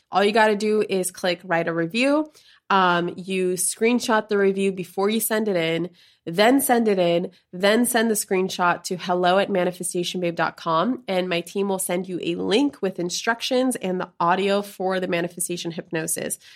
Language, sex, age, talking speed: English, female, 20-39, 180 wpm